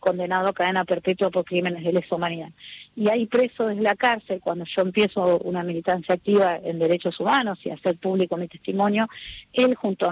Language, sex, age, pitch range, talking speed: Spanish, female, 40-59, 175-200 Hz, 190 wpm